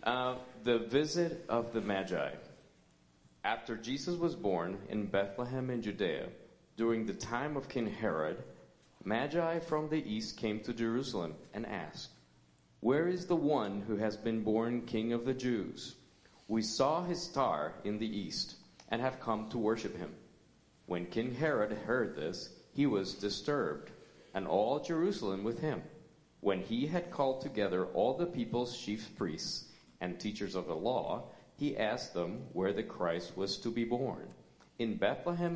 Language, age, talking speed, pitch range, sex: English, 40-59, 160 wpm, 100-135 Hz, male